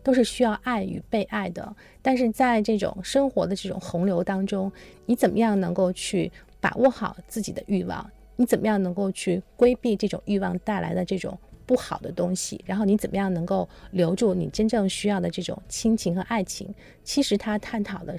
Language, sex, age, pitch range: Chinese, female, 30-49, 185-235 Hz